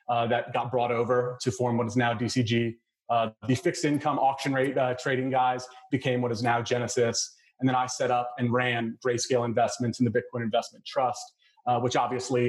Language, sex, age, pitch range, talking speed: English, male, 30-49, 120-130 Hz, 200 wpm